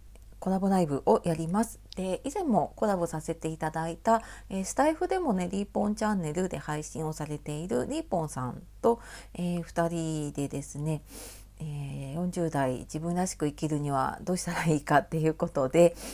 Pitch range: 155-225 Hz